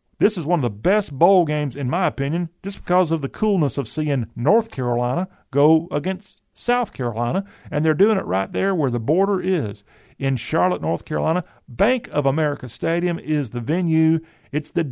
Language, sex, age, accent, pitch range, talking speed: English, male, 50-69, American, 130-165 Hz, 190 wpm